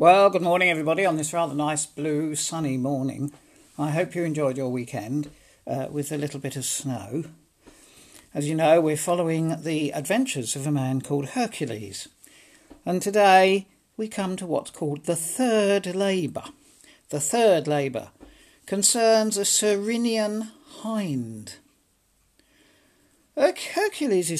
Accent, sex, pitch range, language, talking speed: British, male, 145-215 Hz, English, 135 wpm